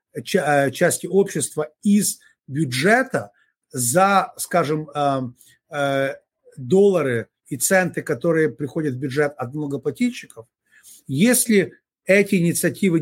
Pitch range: 150-190 Hz